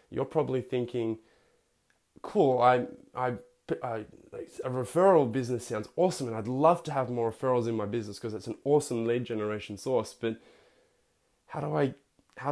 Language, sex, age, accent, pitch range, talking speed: English, male, 20-39, Australian, 110-145 Hz, 150 wpm